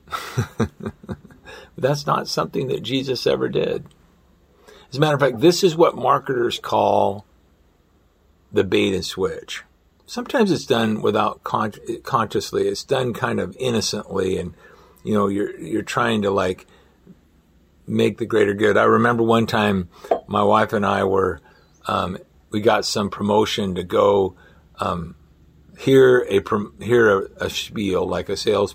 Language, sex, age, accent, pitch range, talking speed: English, male, 50-69, American, 95-120 Hz, 150 wpm